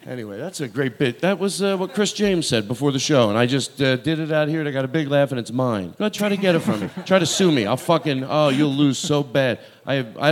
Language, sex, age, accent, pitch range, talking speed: English, male, 40-59, American, 110-160 Hz, 310 wpm